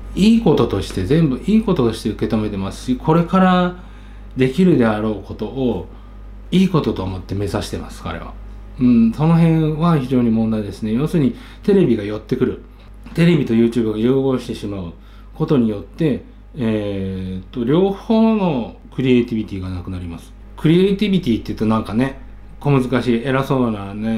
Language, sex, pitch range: Japanese, male, 105-160 Hz